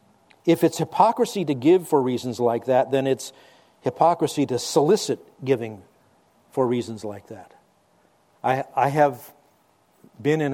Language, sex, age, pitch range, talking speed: English, male, 50-69, 120-150 Hz, 135 wpm